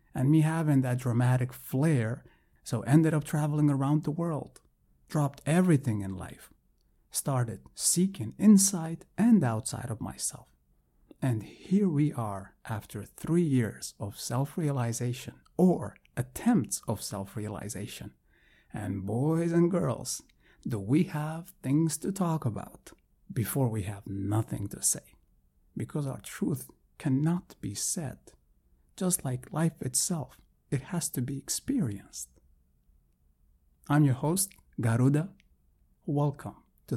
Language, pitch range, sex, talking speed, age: English, 105-150 Hz, male, 120 wpm, 50-69